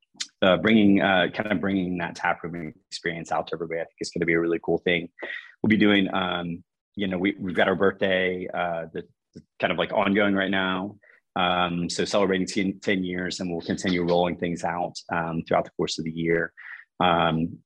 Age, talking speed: 30-49, 215 wpm